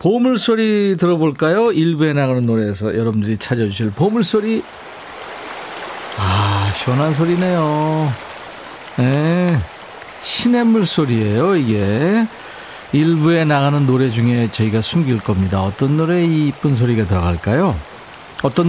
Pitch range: 105-165 Hz